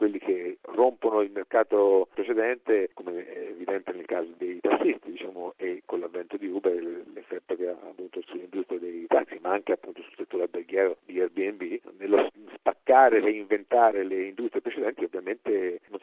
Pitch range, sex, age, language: 335-430 Hz, male, 50-69, Italian